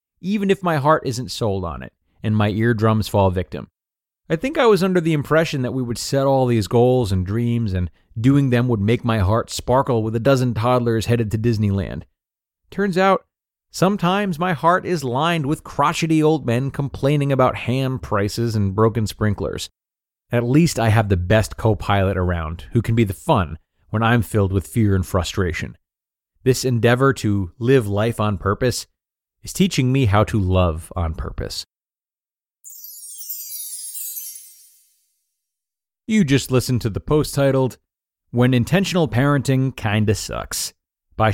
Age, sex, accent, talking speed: 30-49, male, American, 160 wpm